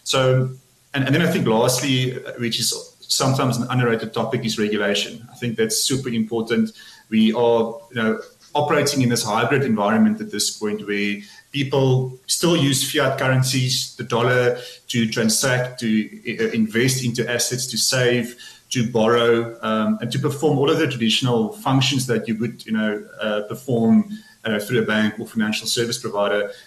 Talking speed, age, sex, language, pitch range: 165 wpm, 30-49, male, English, 115-135 Hz